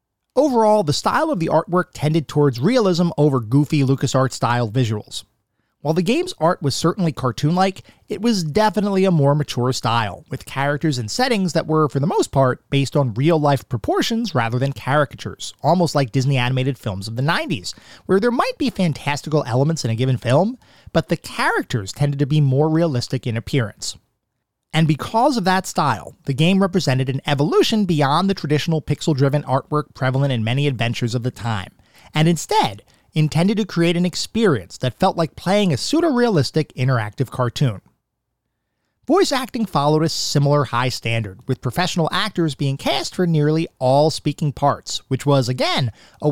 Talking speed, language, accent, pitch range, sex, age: 170 wpm, English, American, 130-170 Hz, male, 30-49